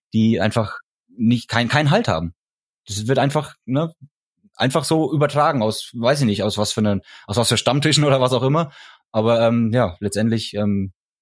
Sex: male